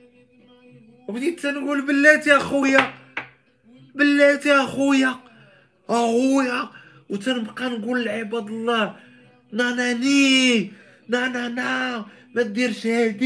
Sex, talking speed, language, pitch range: male, 75 wpm, Arabic, 160-250 Hz